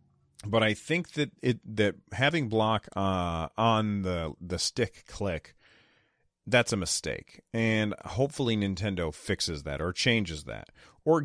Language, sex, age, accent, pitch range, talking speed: English, male, 30-49, American, 90-110 Hz, 140 wpm